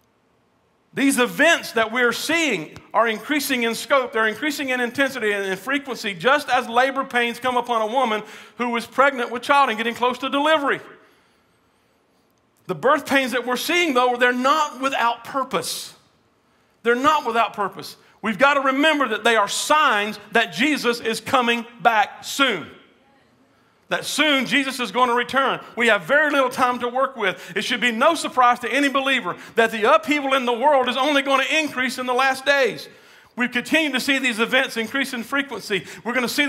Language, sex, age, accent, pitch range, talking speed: English, male, 50-69, American, 230-275 Hz, 185 wpm